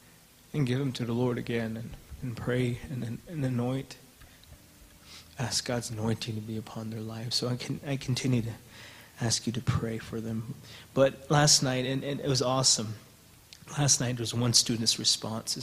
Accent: American